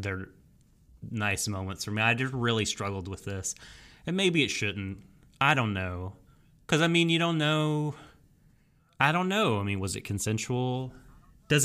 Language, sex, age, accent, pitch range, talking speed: English, male, 30-49, American, 100-130 Hz, 170 wpm